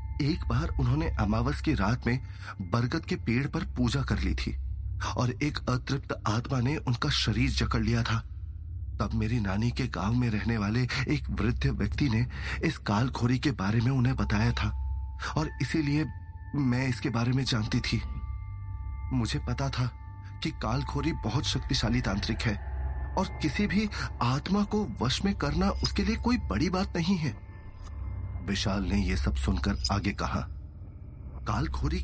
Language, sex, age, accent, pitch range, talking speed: Hindi, male, 30-49, native, 90-120 Hz, 160 wpm